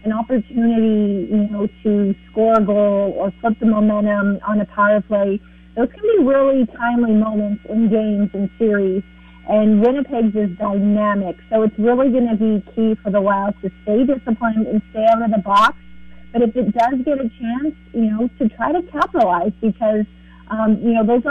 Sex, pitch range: female, 205-235 Hz